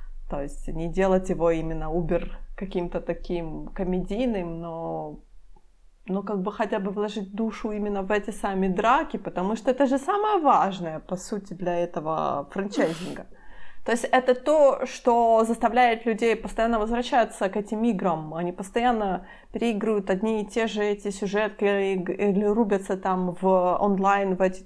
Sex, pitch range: female, 190-225 Hz